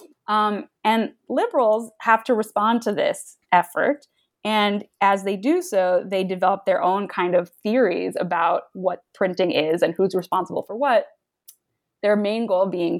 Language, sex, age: English, female, 20-39